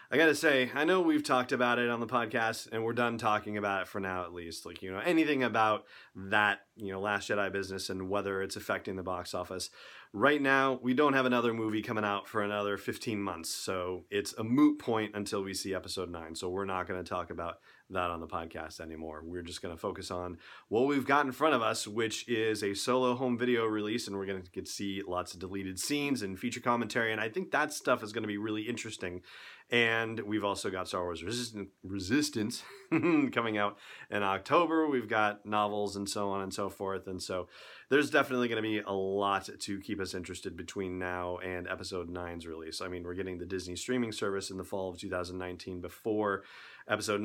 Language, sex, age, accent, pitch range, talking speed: English, male, 30-49, American, 95-115 Hz, 220 wpm